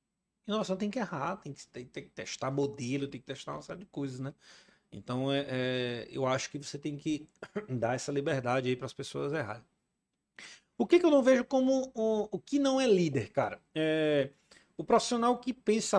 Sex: male